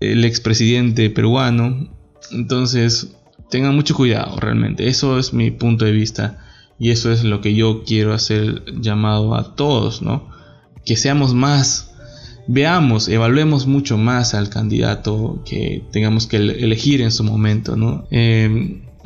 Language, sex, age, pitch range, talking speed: Spanish, male, 20-39, 110-130 Hz, 130 wpm